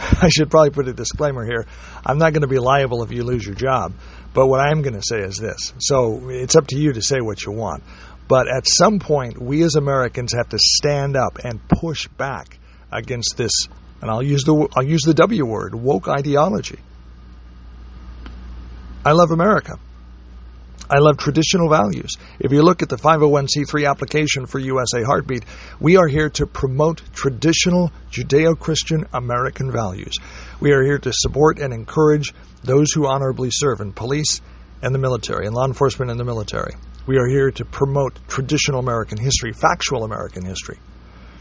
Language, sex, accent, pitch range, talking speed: English, male, American, 110-145 Hz, 175 wpm